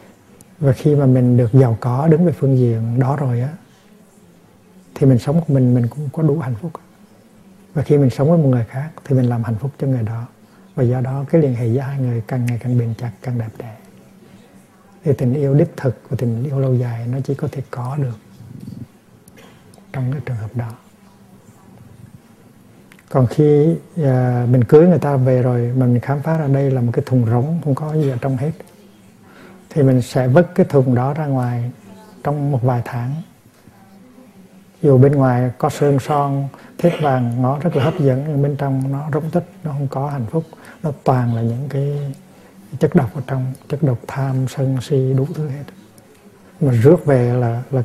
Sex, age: male, 60-79